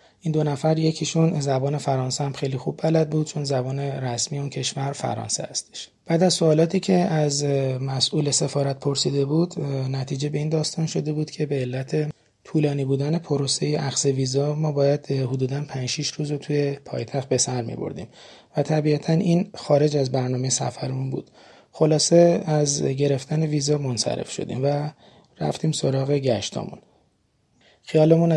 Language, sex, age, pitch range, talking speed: Persian, male, 30-49, 135-155 Hz, 150 wpm